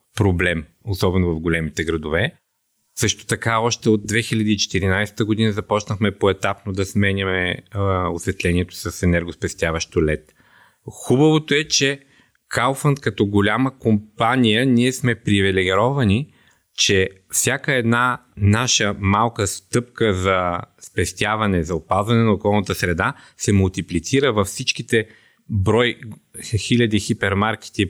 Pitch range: 95-120 Hz